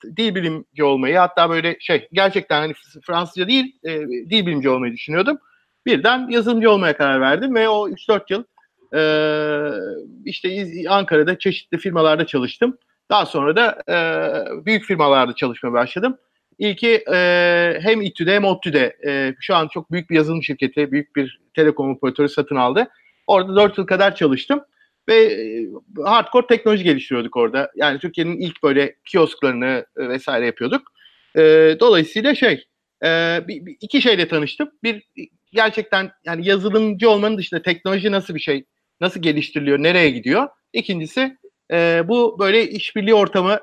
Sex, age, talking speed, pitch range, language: male, 50-69, 135 wpm, 155-220 Hz, Turkish